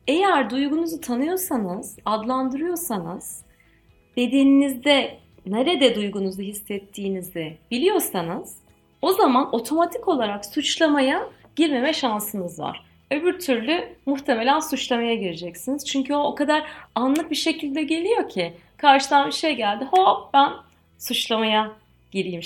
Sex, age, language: female, 30-49, Turkish